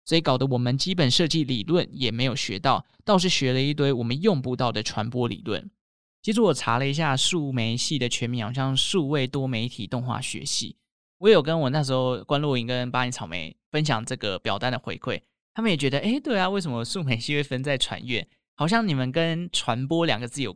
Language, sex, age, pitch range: Chinese, male, 20-39, 120-155 Hz